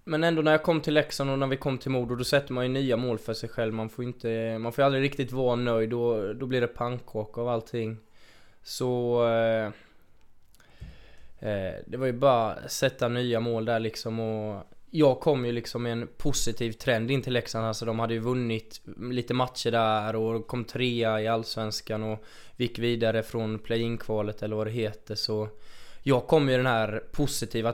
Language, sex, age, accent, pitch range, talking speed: Swedish, male, 20-39, native, 110-125 Hz, 195 wpm